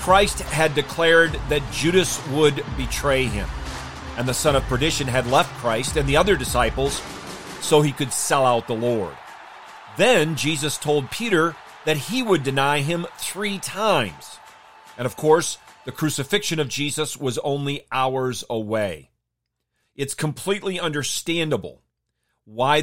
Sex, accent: male, American